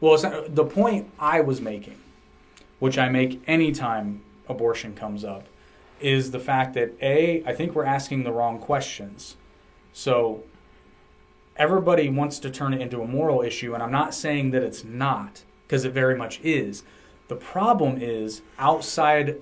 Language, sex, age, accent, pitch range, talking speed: English, male, 30-49, American, 110-140 Hz, 160 wpm